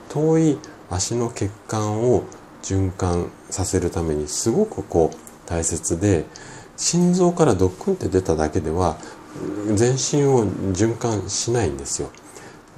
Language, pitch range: Japanese, 80-130 Hz